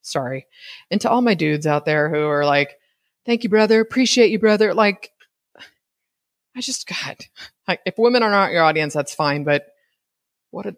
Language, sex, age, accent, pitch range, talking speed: English, female, 30-49, American, 145-225 Hz, 180 wpm